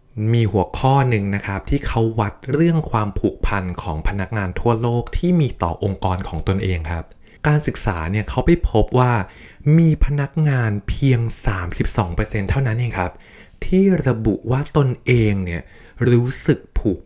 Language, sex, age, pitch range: Thai, male, 20-39, 95-130 Hz